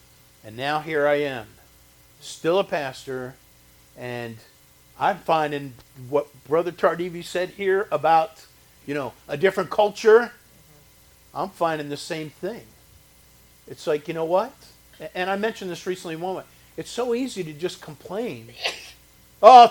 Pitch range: 130-215 Hz